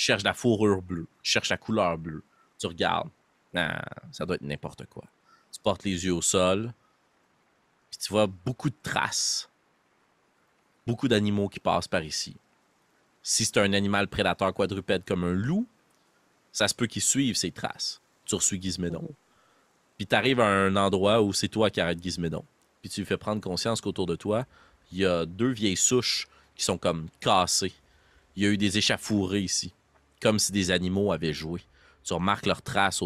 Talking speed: 185 wpm